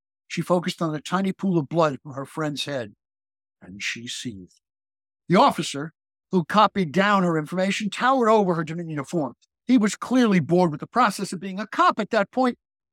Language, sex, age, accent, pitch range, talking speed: English, male, 60-79, American, 140-205 Hz, 190 wpm